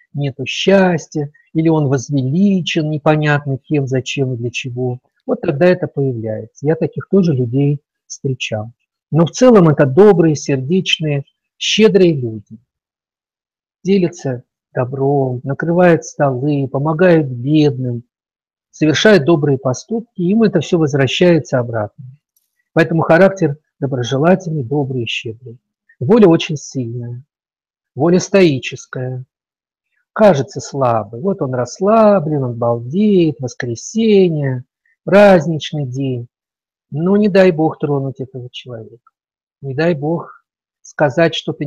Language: Russian